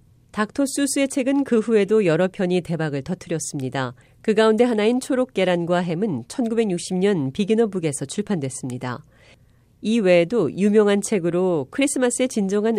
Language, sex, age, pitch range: Korean, female, 40-59, 150-225 Hz